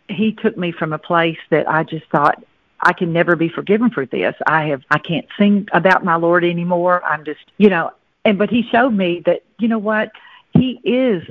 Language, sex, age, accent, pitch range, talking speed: English, female, 50-69, American, 155-195 Hz, 220 wpm